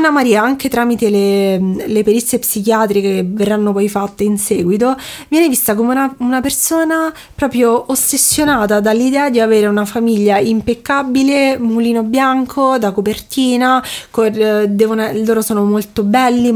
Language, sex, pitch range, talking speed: Italian, female, 205-255 Hz, 140 wpm